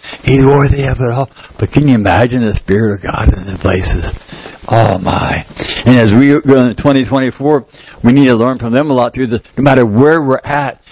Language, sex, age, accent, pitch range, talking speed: English, male, 60-79, American, 115-145 Hz, 210 wpm